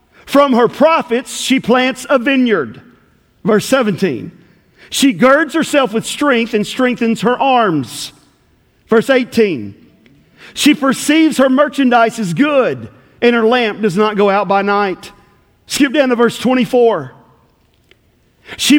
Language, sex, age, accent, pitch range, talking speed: English, male, 40-59, American, 230-290 Hz, 130 wpm